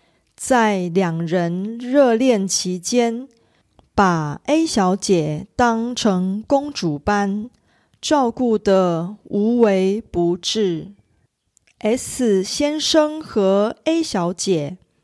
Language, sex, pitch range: Korean, female, 180-245 Hz